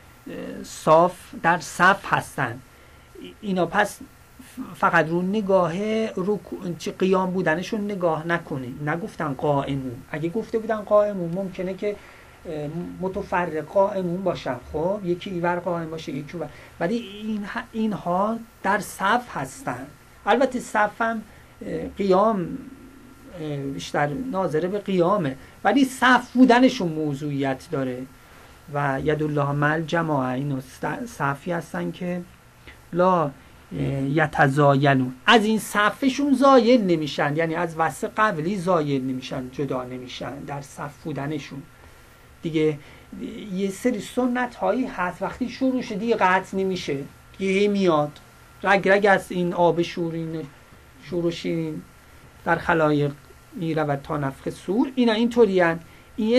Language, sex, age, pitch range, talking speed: Persian, male, 40-59, 150-210 Hz, 110 wpm